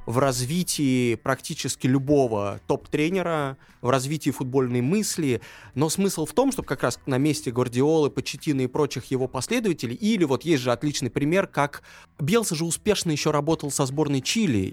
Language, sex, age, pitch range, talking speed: Russian, male, 20-39, 120-155 Hz, 160 wpm